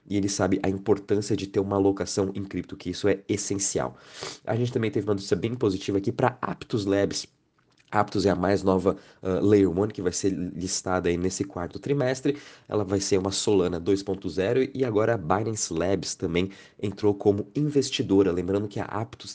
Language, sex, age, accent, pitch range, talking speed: Portuguese, male, 20-39, Brazilian, 95-120 Hz, 195 wpm